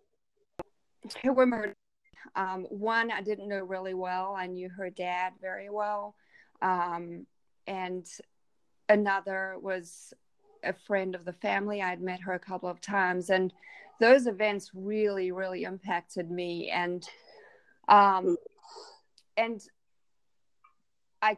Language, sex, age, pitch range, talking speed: English, female, 30-49, 185-220 Hz, 120 wpm